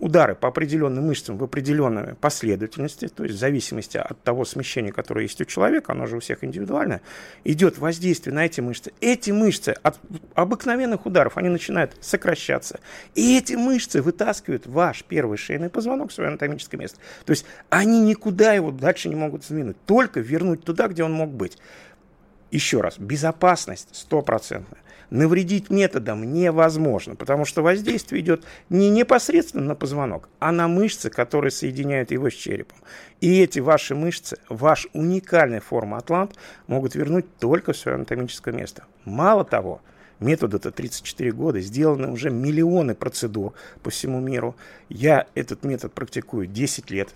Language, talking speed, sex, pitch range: Russian, 155 wpm, male, 125-175 Hz